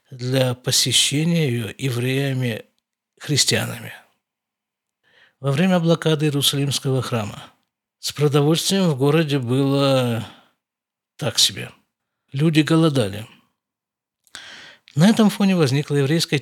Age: 50-69